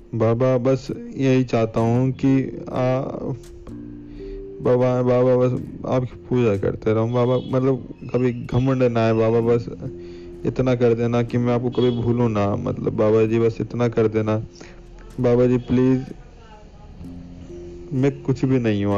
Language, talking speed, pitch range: Hindi, 125 wpm, 105-120 Hz